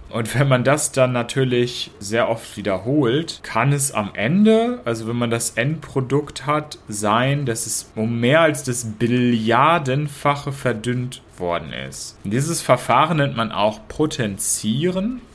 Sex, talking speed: male, 140 wpm